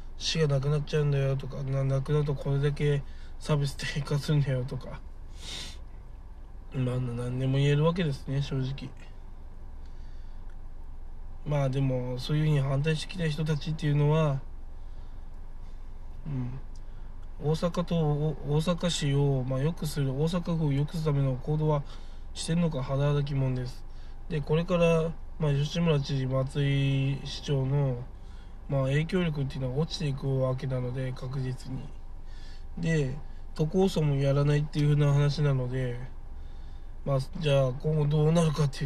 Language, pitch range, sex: Japanese, 130-150 Hz, male